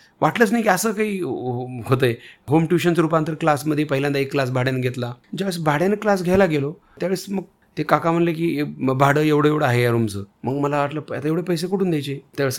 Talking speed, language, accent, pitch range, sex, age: 200 wpm, Marathi, native, 135-175 Hz, male, 40-59